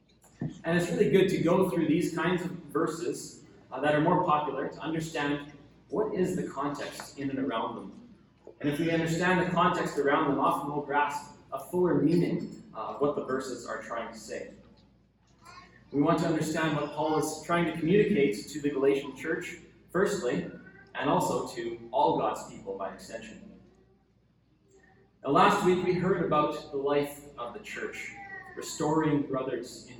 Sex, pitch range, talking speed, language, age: male, 140-180 Hz, 170 wpm, English, 30-49